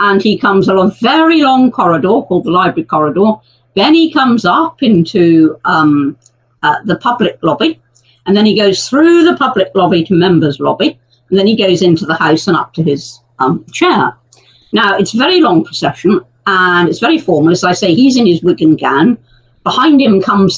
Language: English